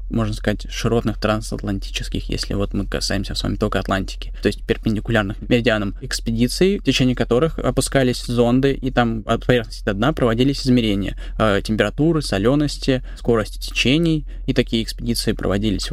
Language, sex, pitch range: Russian, male, 105-125 Hz